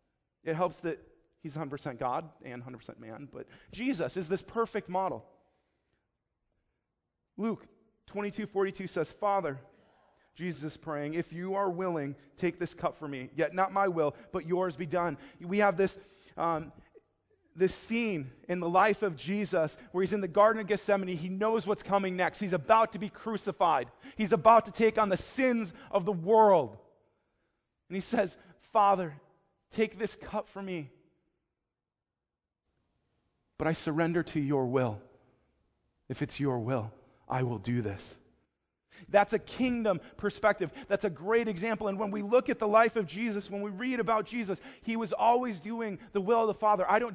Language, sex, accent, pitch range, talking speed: English, male, American, 165-215 Hz, 170 wpm